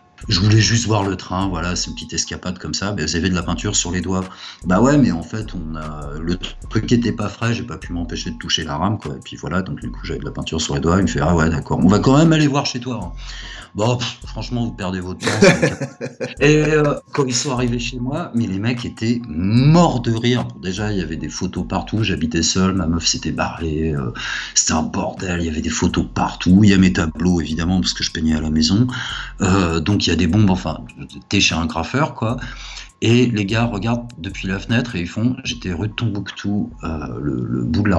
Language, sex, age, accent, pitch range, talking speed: French, male, 50-69, French, 85-115 Hz, 255 wpm